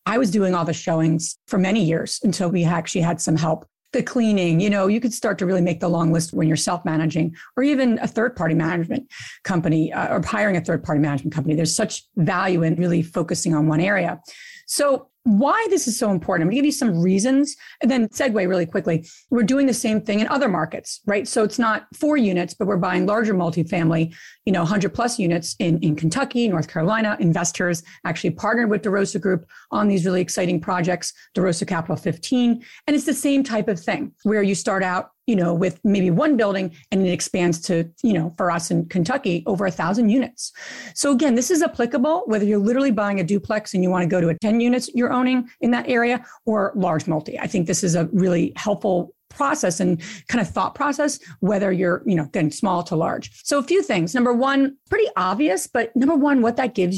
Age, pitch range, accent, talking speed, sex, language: 40-59, 175-240 Hz, American, 220 wpm, female, English